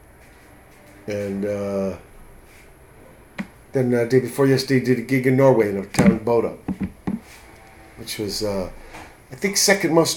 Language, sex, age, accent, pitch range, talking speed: English, male, 50-69, American, 90-130 Hz, 150 wpm